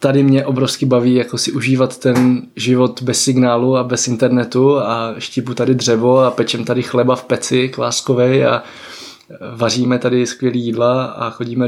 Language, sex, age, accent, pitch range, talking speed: Czech, male, 20-39, native, 120-135 Hz, 165 wpm